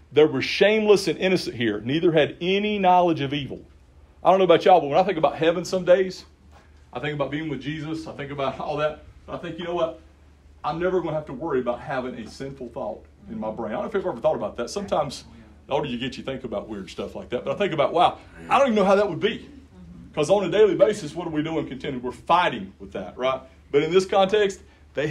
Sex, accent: male, American